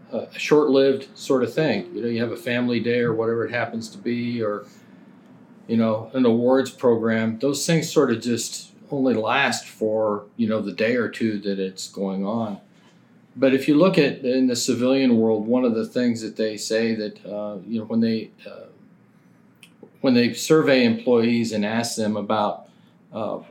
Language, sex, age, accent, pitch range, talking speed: English, male, 40-59, American, 110-130 Hz, 190 wpm